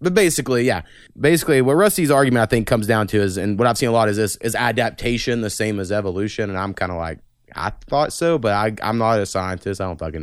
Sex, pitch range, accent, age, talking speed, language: male, 100-125 Hz, American, 20-39, 250 wpm, English